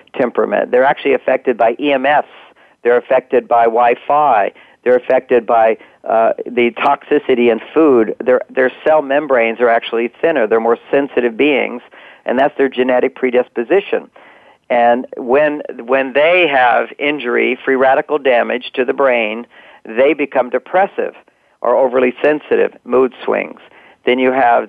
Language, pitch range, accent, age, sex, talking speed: English, 120-150 Hz, American, 50-69, male, 140 wpm